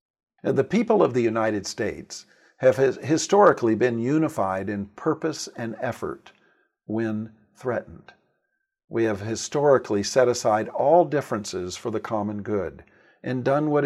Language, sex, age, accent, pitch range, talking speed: English, male, 50-69, American, 105-140 Hz, 130 wpm